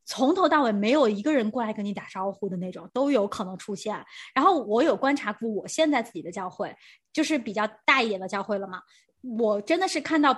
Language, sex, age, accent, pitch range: Chinese, female, 20-39, native, 215-325 Hz